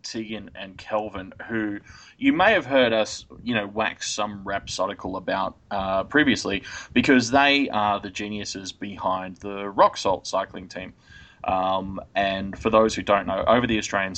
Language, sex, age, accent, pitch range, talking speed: English, male, 20-39, Australian, 95-110 Hz, 160 wpm